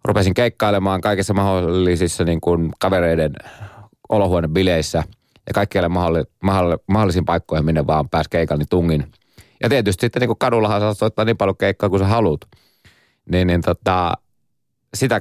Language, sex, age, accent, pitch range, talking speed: Finnish, male, 30-49, native, 80-110 Hz, 140 wpm